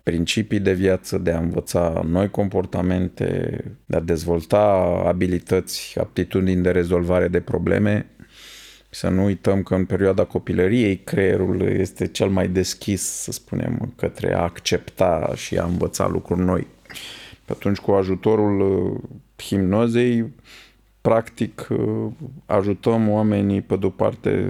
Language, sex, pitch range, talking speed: Romanian, male, 95-110 Hz, 120 wpm